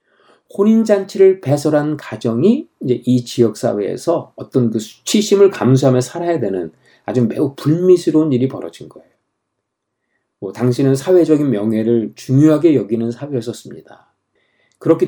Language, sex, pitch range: Korean, male, 120-180 Hz